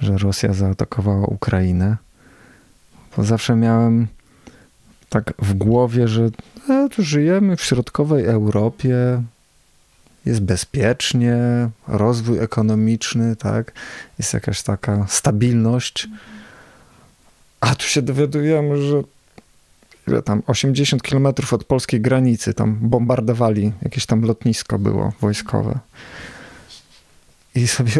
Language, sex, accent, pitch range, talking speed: Polish, male, native, 110-130 Hz, 95 wpm